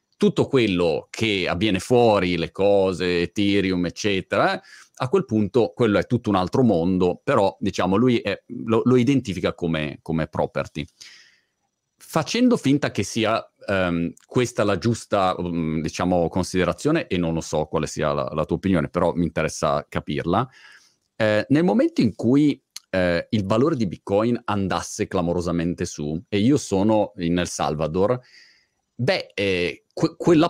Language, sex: Italian, male